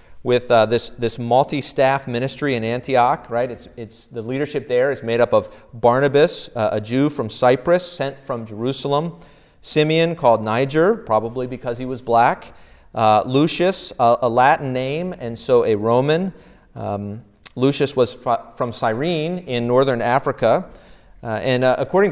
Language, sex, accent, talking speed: English, male, American, 155 wpm